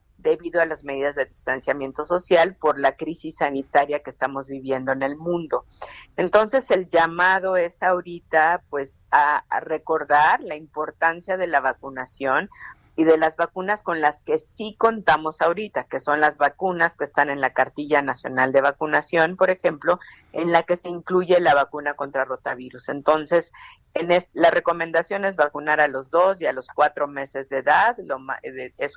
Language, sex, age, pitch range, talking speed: Spanish, female, 50-69, 140-170 Hz, 165 wpm